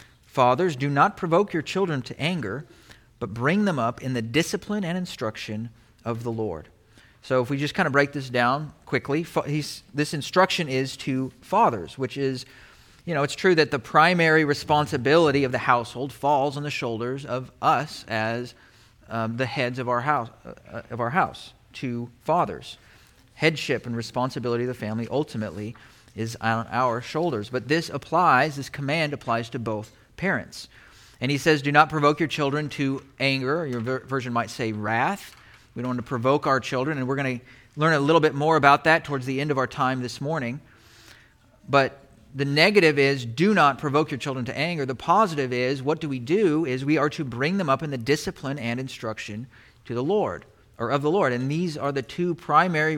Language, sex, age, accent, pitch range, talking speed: English, male, 40-59, American, 120-155 Hz, 195 wpm